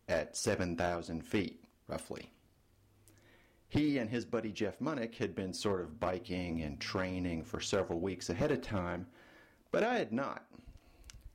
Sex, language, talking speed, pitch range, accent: male, English, 145 wpm, 90-110 Hz, American